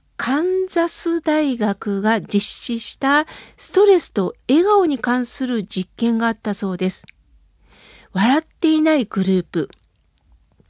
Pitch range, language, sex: 220-325 Hz, Japanese, female